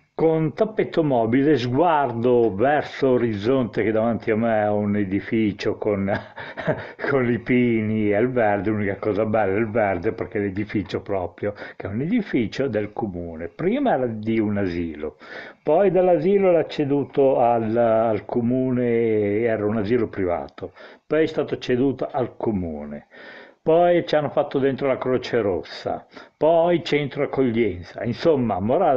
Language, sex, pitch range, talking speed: Italian, male, 100-125 Hz, 145 wpm